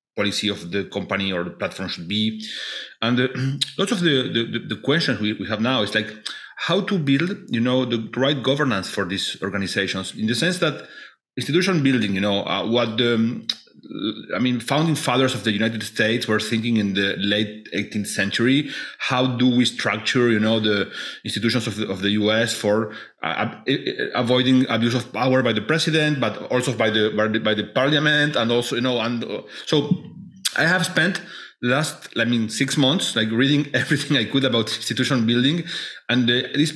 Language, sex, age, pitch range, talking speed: English, male, 30-49, 110-135 Hz, 190 wpm